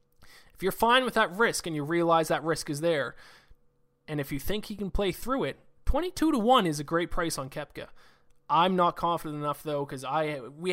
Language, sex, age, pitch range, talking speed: English, male, 20-39, 140-175 Hz, 220 wpm